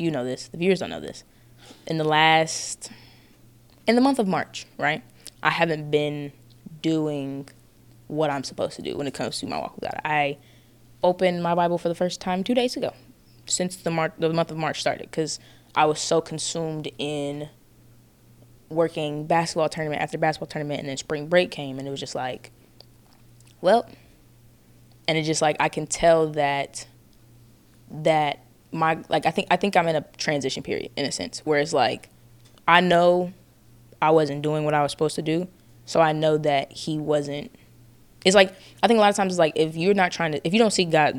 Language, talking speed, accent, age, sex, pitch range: English, 200 wpm, American, 20-39, female, 130-170 Hz